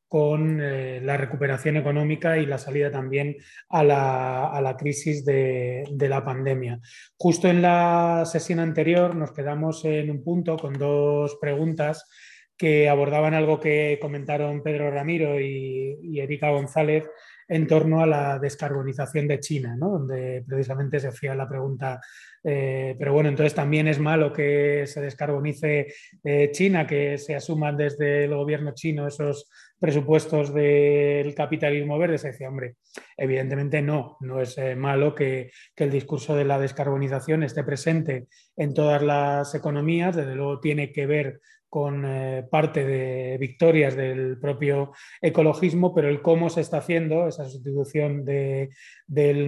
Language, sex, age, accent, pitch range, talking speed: Spanish, male, 20-39, Spanish, 140-155 Hz, 150 wpm